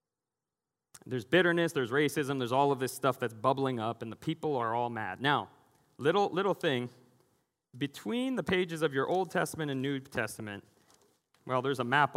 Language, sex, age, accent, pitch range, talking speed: English, male, 30-49, American, 115-150 Hz, 180 wpm